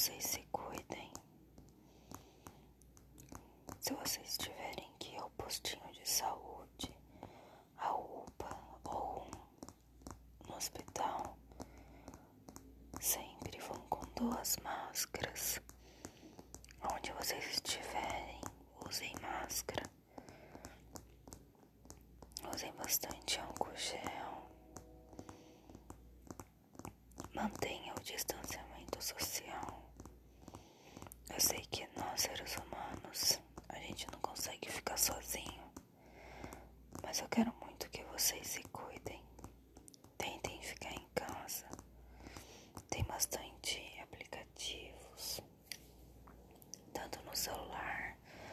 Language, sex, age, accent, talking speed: Portuguese, female, 20-39, Brazilian, 80 wpm